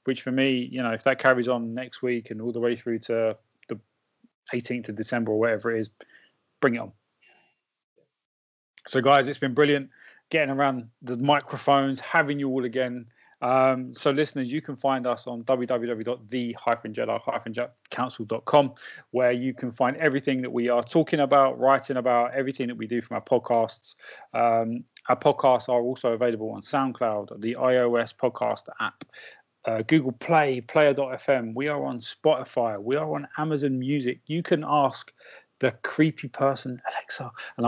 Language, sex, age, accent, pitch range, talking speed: English, male, 20-39, British, 120-140 Hz, 165 wpm